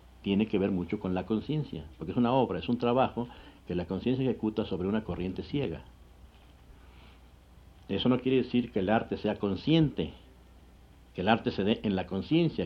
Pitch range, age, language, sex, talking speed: 80-120 Hz, 60-79, Spanish, male, 185 wpm